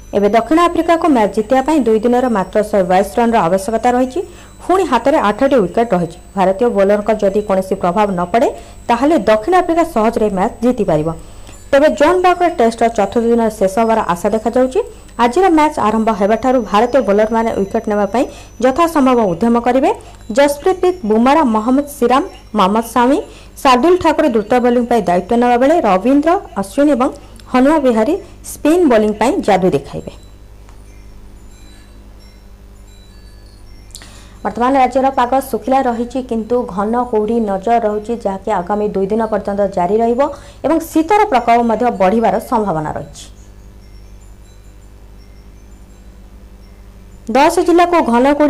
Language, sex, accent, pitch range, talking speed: Hindi, female, native, 190-265 Hz, 120 wpm